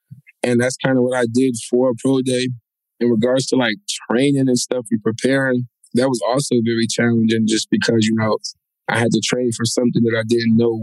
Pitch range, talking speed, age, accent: 110-125 Hz, 215 wpm, 20-39, American